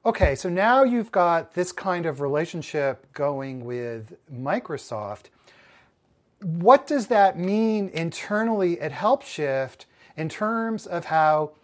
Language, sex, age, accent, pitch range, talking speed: English, male, 40-59, American, 145-185 Hz, 120 wpm